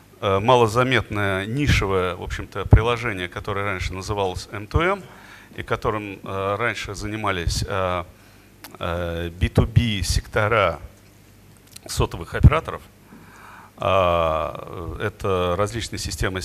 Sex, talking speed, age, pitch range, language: male, 75 wpm, 40-59, 95-115 Hz, Russian